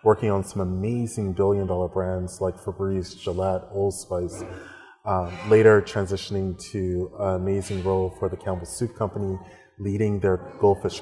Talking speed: 140 wpm